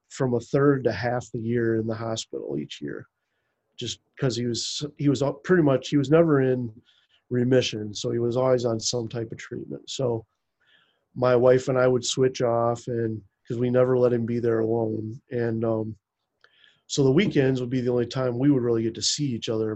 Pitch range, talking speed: 120-140 Hz, 215 wpm